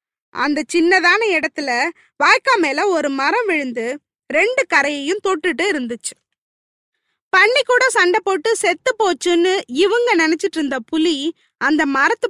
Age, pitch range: 20-39, 285-390 Hz